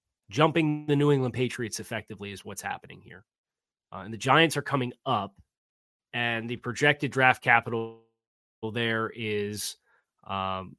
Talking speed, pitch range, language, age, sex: 140 wpm, 105-135 Hz, English, 30-49, male